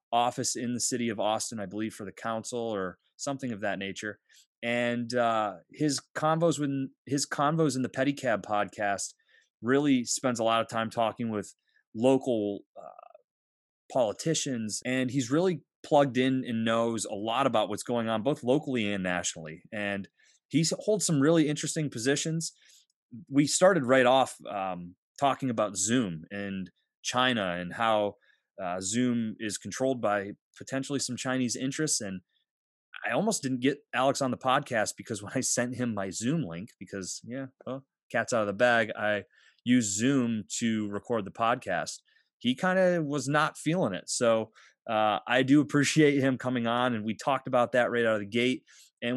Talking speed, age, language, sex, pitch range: 170 wpm, 30-49, English, male, 110-140 Hz